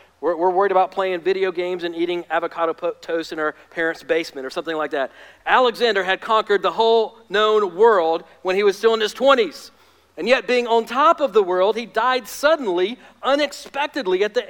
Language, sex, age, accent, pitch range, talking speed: English, male, 40-59, American, 180-250 Hz, 190 wpm